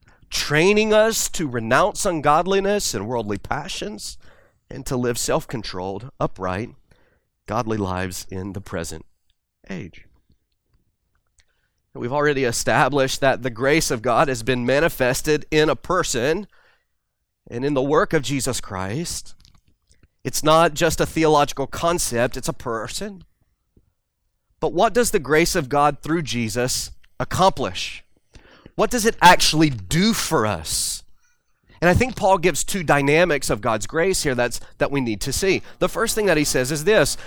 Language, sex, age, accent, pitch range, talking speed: English, male, 30-49, American, 115-185 Hz, 145 wpm